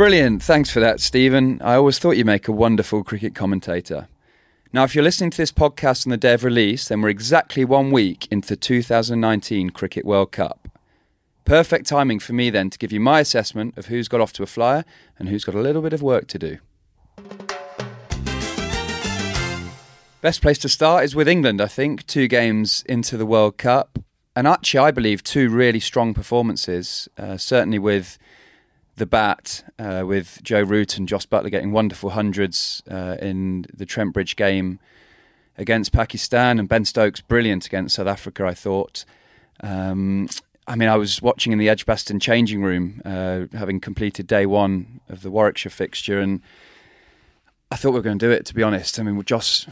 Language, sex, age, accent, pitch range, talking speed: English, male, 30-49, British, 100-120 Hz, 185 wpm